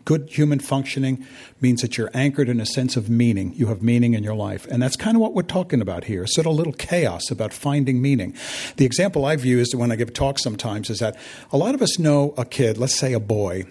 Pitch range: 115-145 Hz